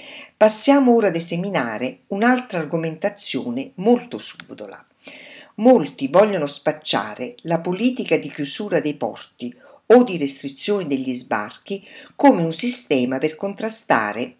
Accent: native